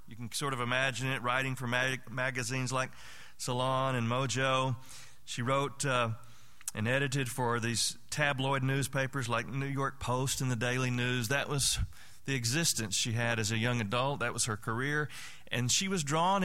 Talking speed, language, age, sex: 175 wpm, English, 40-59, male